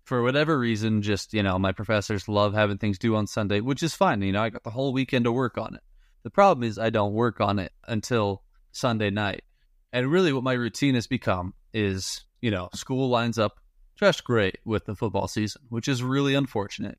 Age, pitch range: 20-39, 105-125 Hz